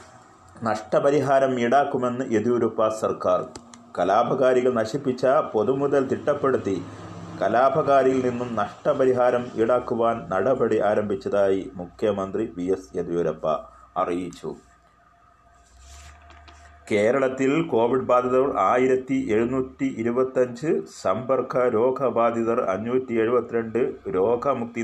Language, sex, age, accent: Malayalam, male, 30-49, native